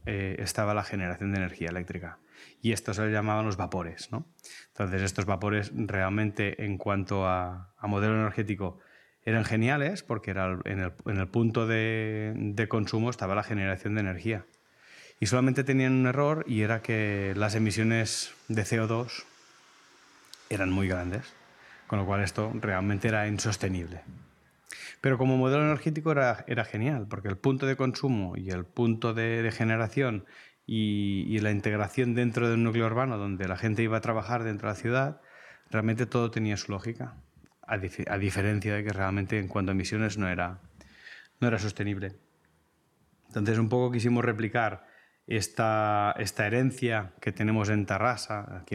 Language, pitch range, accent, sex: Spanish, 100-115 Hz, Spanish, male